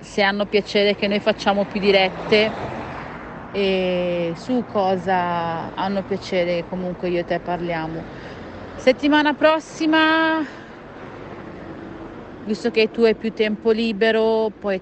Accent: native